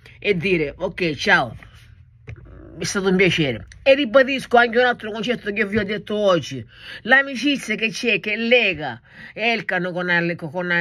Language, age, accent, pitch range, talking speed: Dutch, 50-69, Italian, 165-230 Hz, 150 wpm